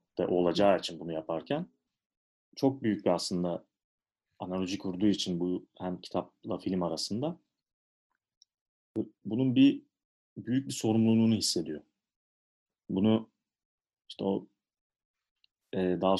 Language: Turkish